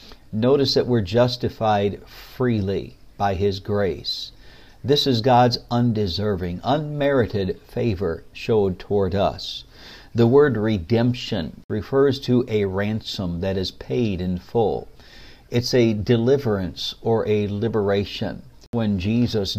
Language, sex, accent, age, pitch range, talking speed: English, male, American, 60-79, 100-120 Hz, 115 wpm